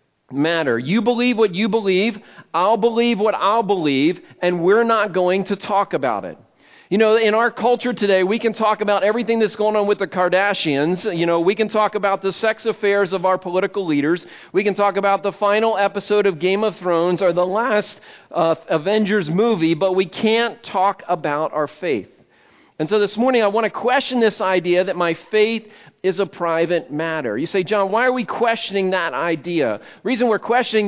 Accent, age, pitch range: American, 40-59, 185-225 Hz